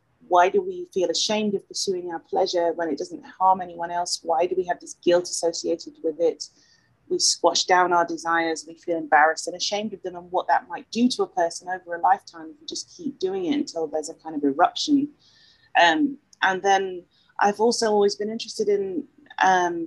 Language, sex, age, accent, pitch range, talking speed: English, female, 30-49, British, 170-240 Hz, 205 wpm